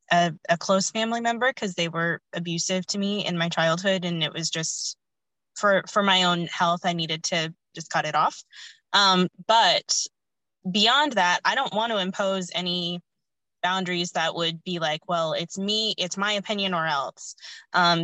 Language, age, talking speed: English, 20-39, 180 wpm